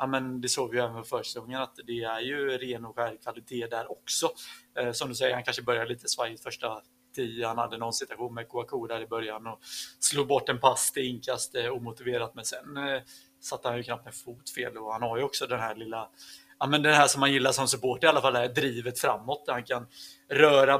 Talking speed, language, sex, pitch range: 240 wpm, Swedish, male, 120-135 Hz